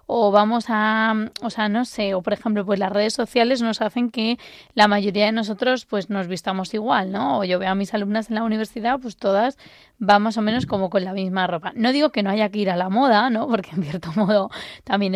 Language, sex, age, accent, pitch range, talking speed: Spanish, female, 20-39, Spanish, 205-240 Hz, 245 wpm